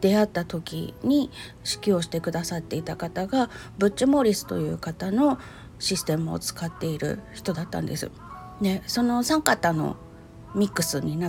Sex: female